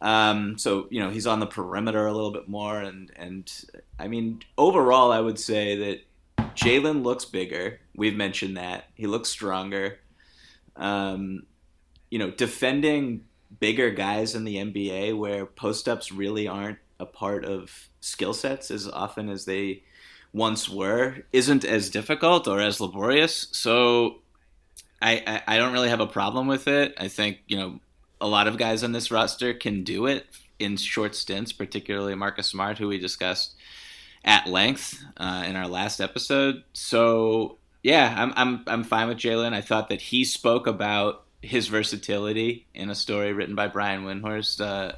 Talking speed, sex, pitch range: 165 wpm, male, 100-115 Hz